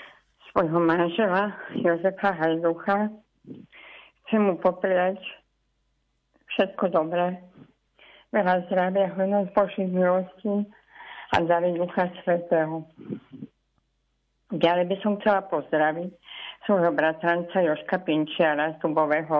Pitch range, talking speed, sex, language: 160-185 Hz, 90 wpm, female, Slovak